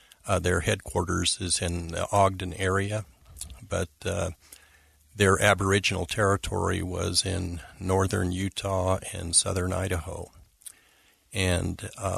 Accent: American